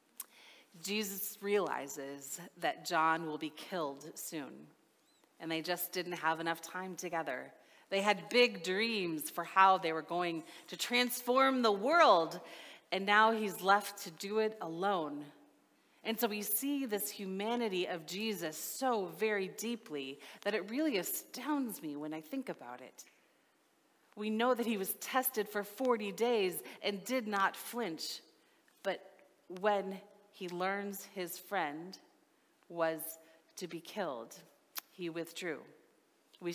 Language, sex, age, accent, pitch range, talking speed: English, female, 30-49, American, 160-205 Hz, 140 wpm